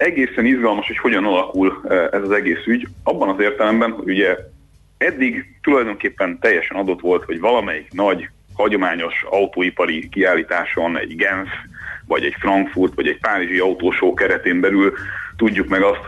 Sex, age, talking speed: male, 30-49, 140 wpm